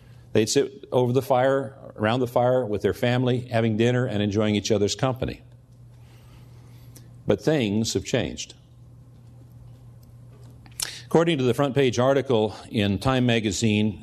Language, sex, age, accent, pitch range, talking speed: English, male, 50-69, American, 110-125 Hz, 135 wpm